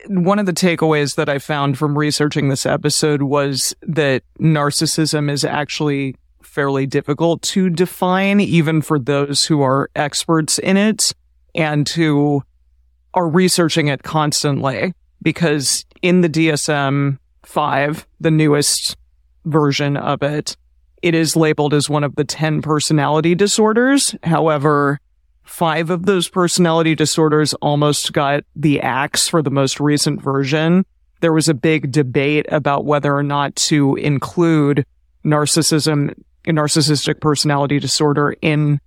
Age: 30-49